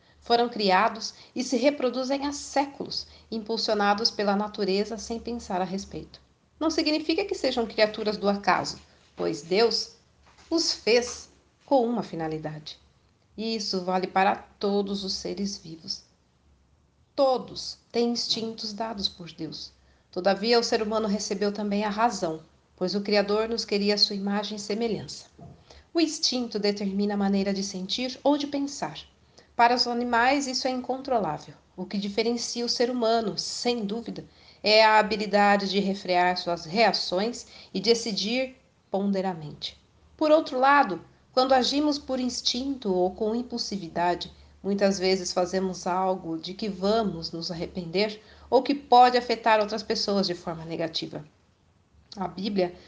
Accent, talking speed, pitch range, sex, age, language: Brazilian, 140 wpm, 190-240 Hz, female, 40-59, Portuguese